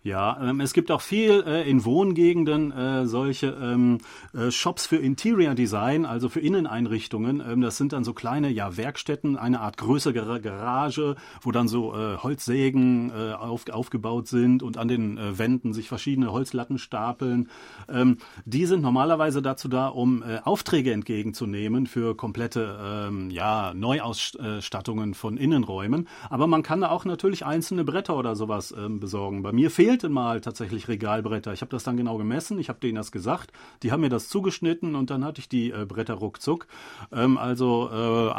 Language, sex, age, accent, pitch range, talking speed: German, male, 40-59, German, 110-140 Hz, 150 wpm